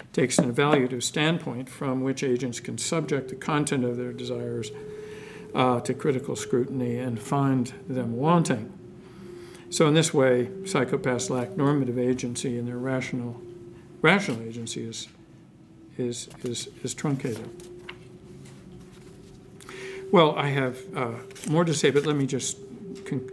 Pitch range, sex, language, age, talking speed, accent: 125-155 Hz, male, English, 60-79, 135 wpm, American